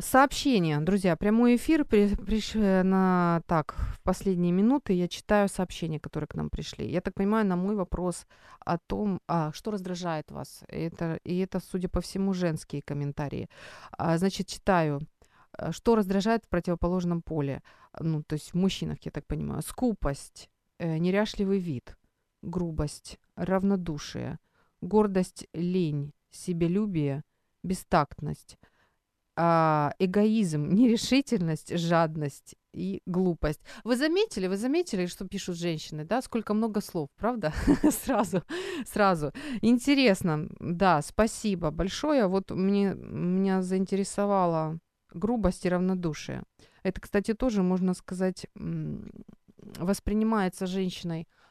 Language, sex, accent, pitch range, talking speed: Ukrainian, female, native, 165-210 Hz, 115 wpm